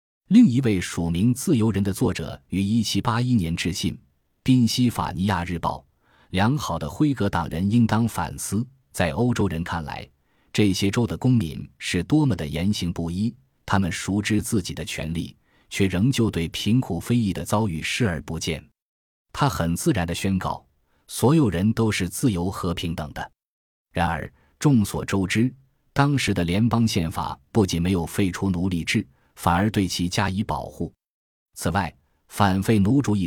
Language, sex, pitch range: Chinese, male, 85-115 Hz